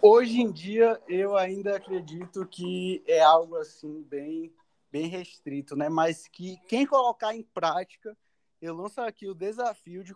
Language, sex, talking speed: Portuguese, male, 155 wpm